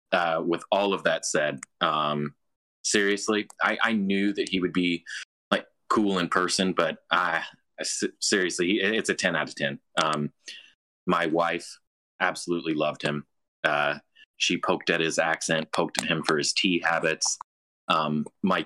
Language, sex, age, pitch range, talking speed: English, male, 30-49, 80-95 Hz, 165 wpm